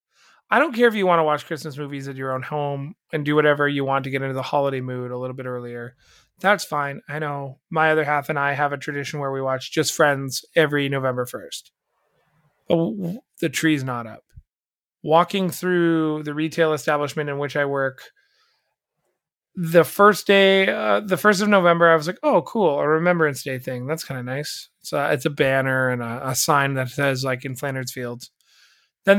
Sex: male